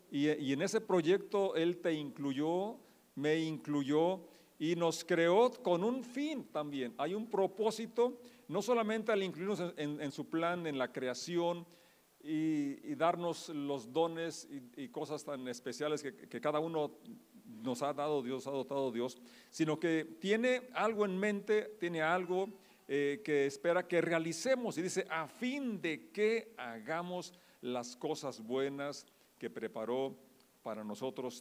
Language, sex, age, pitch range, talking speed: Spanish, male, 50-69, 140-185 Hz, 155 wpm